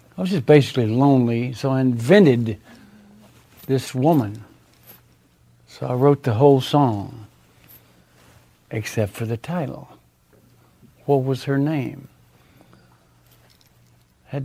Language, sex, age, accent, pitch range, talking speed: English, male, 60-79, American, 105-140 Hz, 105 wpm